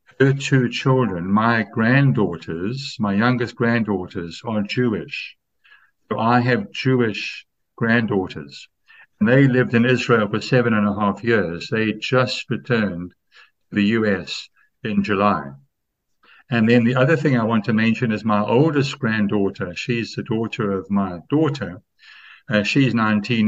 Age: 60-79